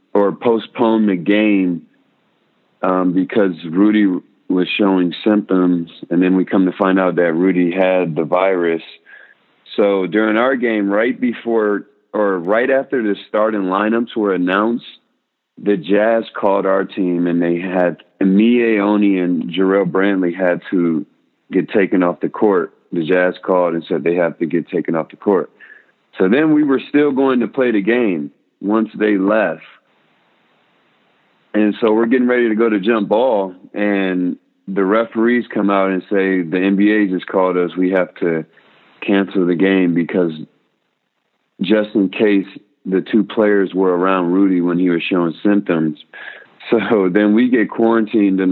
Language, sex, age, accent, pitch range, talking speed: English, male, 40-59, American, 90-110 Hz, 160 wpm